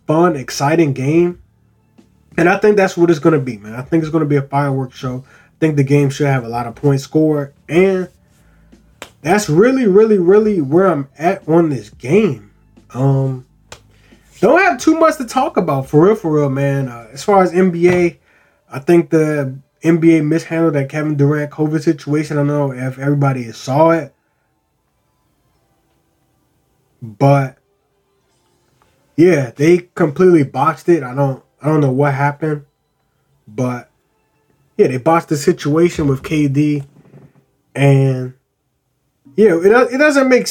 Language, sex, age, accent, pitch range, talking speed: English, male, 20-39, American, 135-180 Hz, 160 wpm